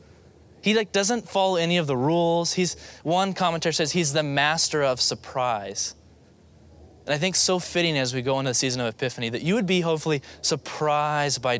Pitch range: 120-155 Hz